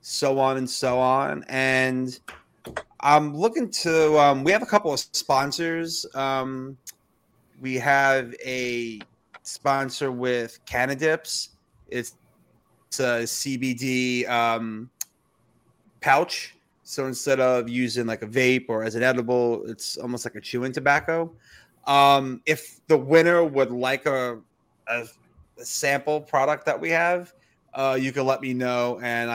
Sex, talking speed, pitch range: male, 140 wpm, 125-140 Hz